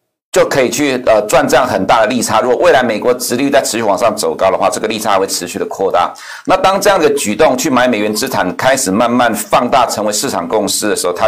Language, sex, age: Chinese, male, 60-79